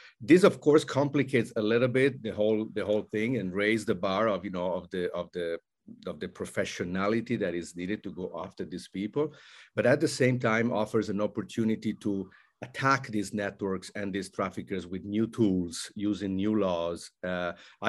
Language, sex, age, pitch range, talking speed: English, male, 50-69, 95-115 Hz, 190 wpm